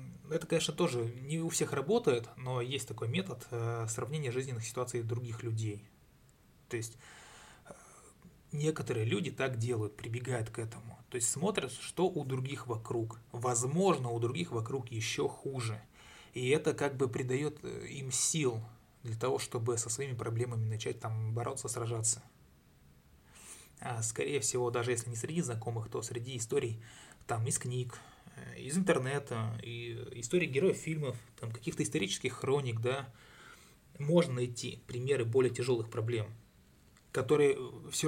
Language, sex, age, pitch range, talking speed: Russian, male, 20-39, 115-140 Hz, 135 wpm